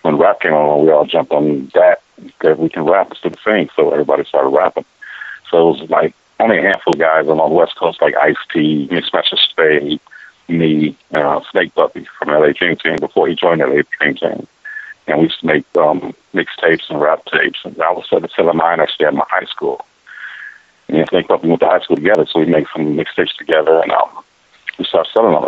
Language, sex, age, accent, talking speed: English, male, 50-69, American, 225 wpm